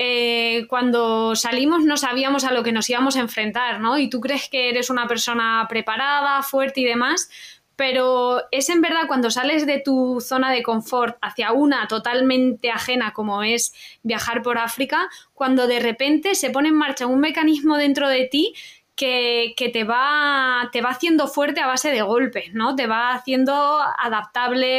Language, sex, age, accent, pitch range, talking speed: Spanish, female, 20-39, Spanish, 235-290 Hz, 175 wpm